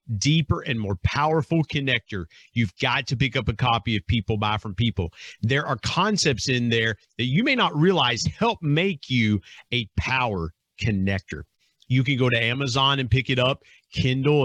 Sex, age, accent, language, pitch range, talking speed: male, 50-69, American, English, 110-150 Hz, 180 wpm